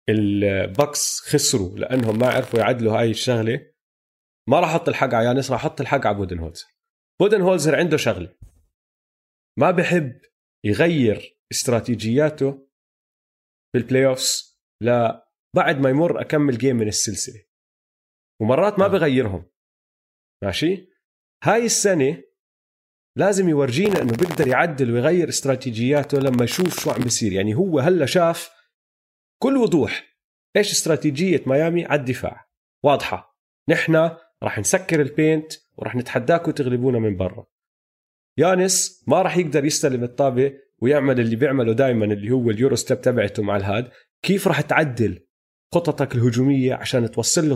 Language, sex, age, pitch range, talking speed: Arabic, male, 30-49, 110-155 Hz, 125 wpm